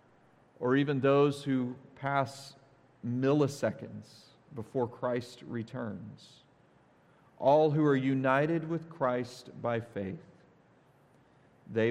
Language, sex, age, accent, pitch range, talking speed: English, male, 40-59, American, 110-140 Hz, 90 wpm